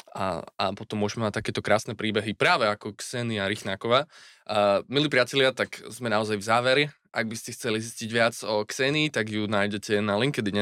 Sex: male